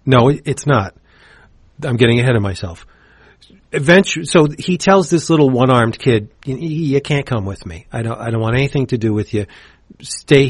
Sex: male